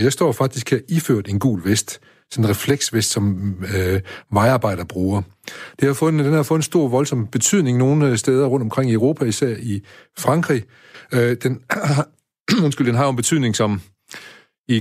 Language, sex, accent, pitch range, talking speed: Danish, male, native, 105-135 Hz, 175 wpm